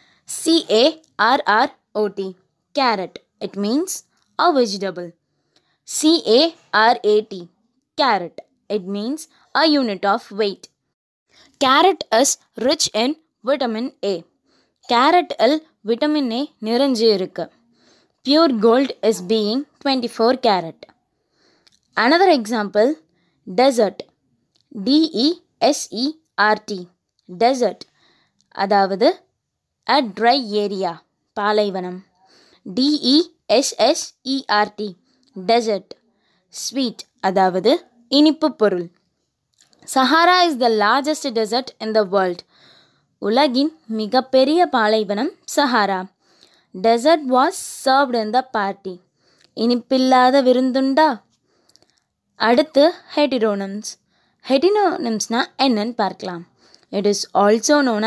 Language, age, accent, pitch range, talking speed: Tamil, 20-39, native, 205-285 Hz, 80 wpm